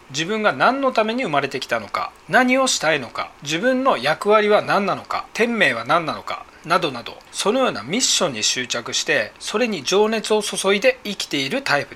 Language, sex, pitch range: Japanese, male, 160-230 Hz